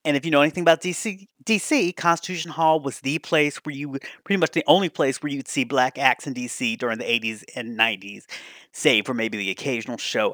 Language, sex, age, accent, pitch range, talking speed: English, male, 30-49, American, 155-225 Hz, 220 wpm